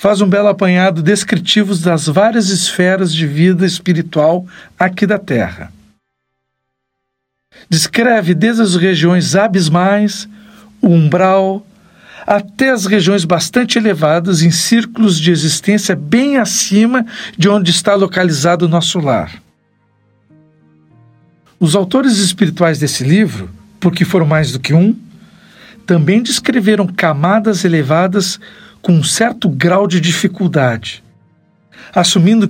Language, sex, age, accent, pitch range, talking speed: Portuguese, male, 60-79, Brazilian, 155-205 Hz, 115 wpm